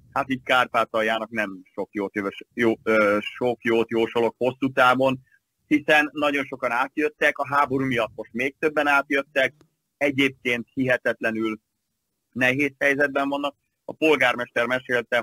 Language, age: Hungarian, 30-49